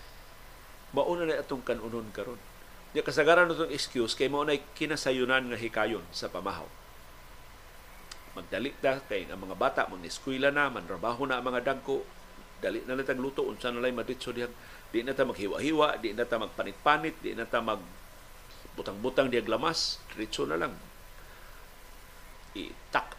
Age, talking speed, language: 50-69, 140 wpm, Filipino